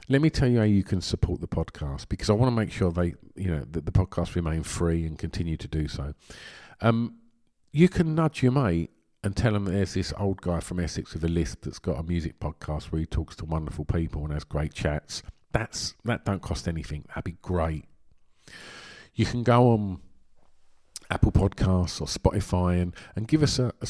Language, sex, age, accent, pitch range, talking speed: English, male, 50-69, British, 85-110 Hz, 215 wpm